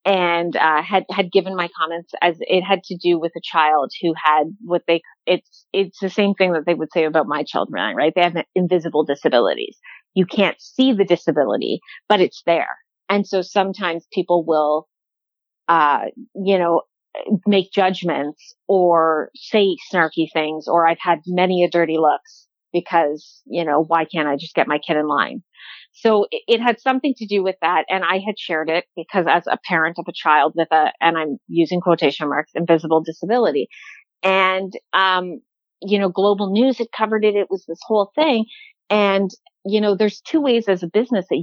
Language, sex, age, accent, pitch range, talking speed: English, female, 30-49, American, 165-205 Hz, 190 wpm